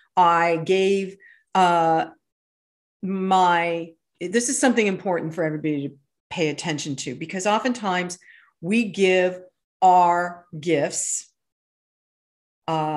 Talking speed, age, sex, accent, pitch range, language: 95 wpm, 50-69, female, American, 165-220 Hz, English